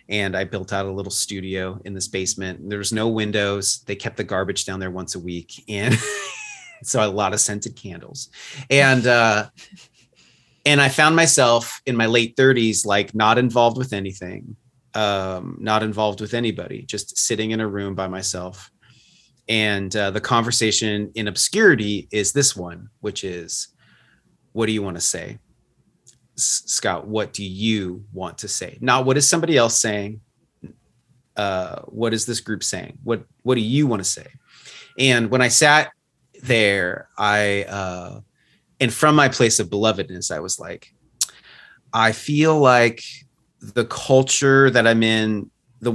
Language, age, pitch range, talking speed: English, 30-49, 100-125 Hz, 165 wpm